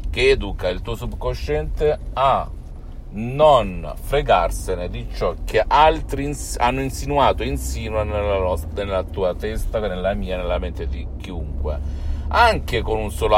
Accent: native